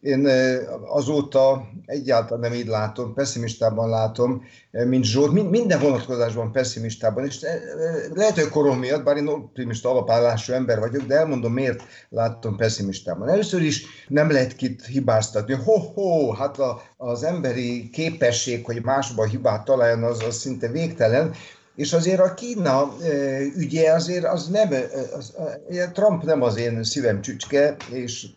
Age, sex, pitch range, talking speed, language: 60-79, male, 115-150 Hz, 130 wpm, Hungarian